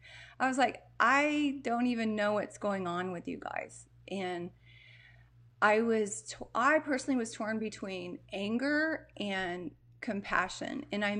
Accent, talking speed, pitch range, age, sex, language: American, 135 wpm, 170-235 Hz, 30-49, female, English